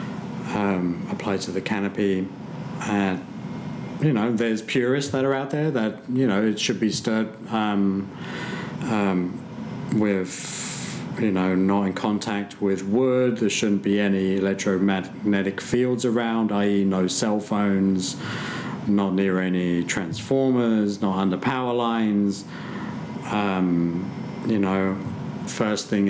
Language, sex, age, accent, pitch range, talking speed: English, male, 50-69, British, 95-115 Hz, 125 wpm